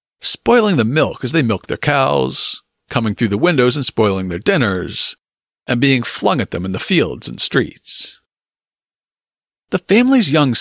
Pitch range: 120-195 Hz